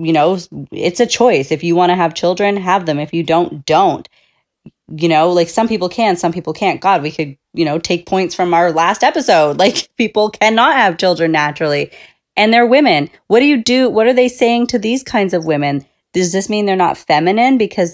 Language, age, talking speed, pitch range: English, 30-49, 220 wpm, 160-200 Hz